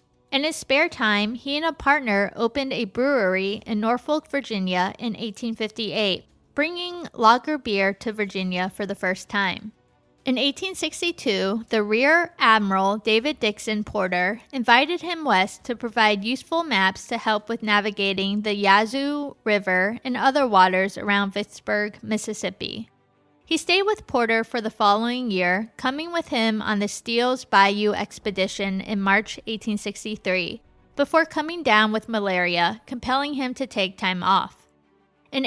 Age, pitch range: 20-39, 200-270 Hz